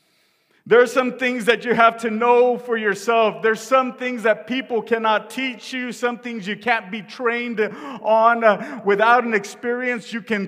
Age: 40-59